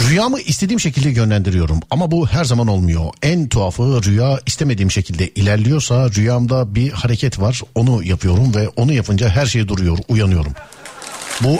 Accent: native